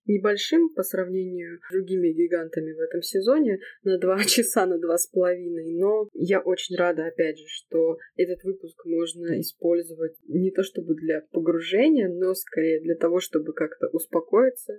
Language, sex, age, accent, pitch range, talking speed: Russian, female, 20-39, native, 170-225 Hz, 160 wpm